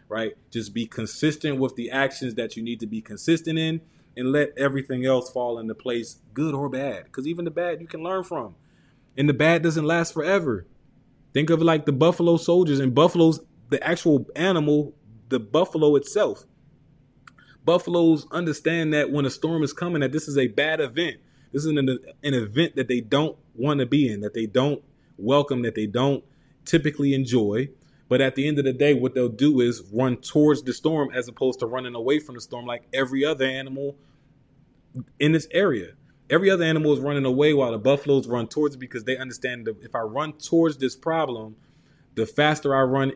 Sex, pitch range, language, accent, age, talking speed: male, 125-155 Hz, English, American, 20-39, 200 wpm